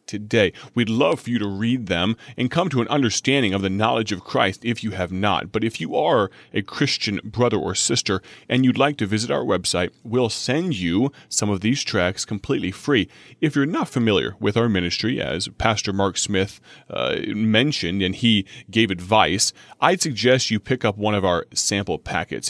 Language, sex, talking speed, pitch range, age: English, male, 195 wpm, 95-115 Hz, 30-49